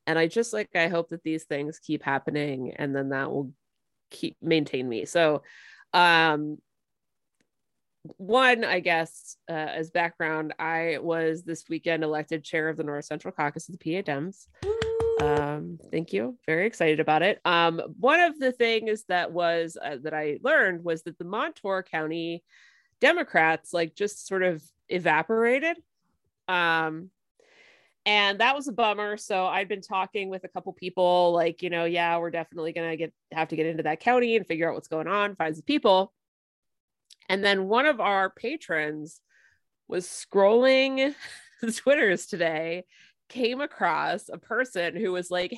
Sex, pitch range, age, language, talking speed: female, 160-205 Hz, 30-49, English, 165 wpm